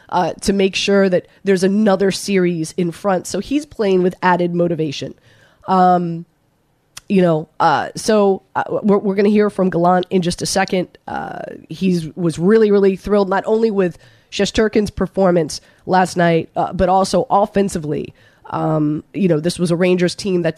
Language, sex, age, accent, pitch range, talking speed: English, female, 20-39, American, 170-205 Hz, 175 wpm